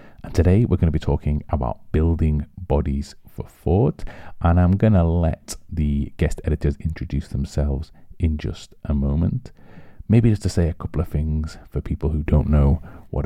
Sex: male